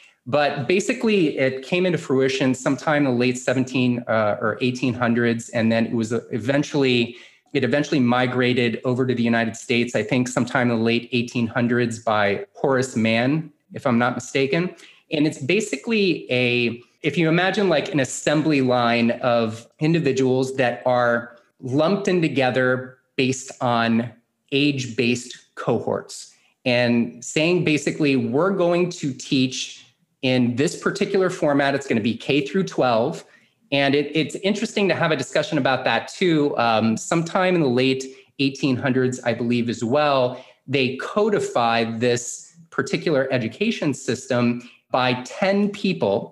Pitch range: 120-155 Hz